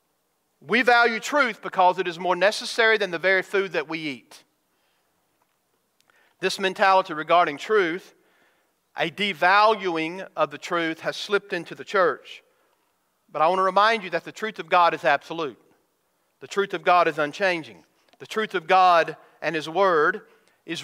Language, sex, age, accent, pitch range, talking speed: English, male, 40-59, American, 170-245 Hz, 160 wpm